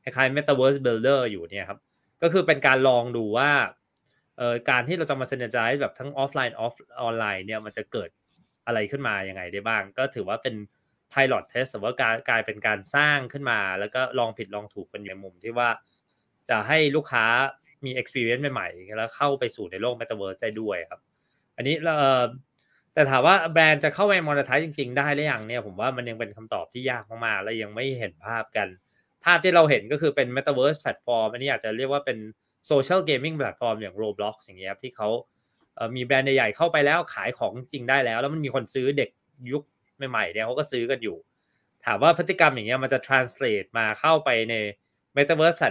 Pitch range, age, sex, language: 110-145 Hz, 20-39, male, Thai